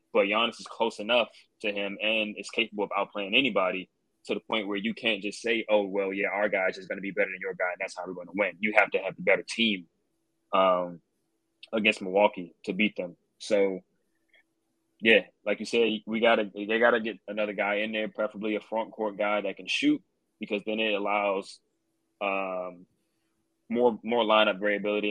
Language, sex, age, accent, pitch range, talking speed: English, male, 20-39, American, 100-110 Hz, 205 wpm